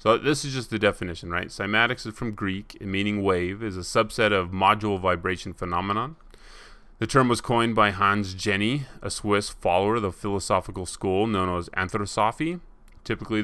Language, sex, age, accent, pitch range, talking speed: English, male, 30-49, American, 95-115 Hz, 170 wpm